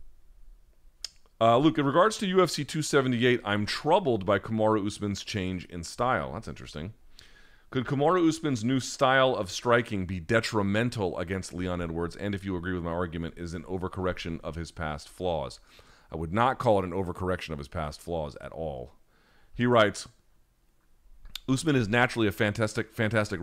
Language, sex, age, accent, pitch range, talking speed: English, male, 40-59, American, 90-115 Hz, 165 wpm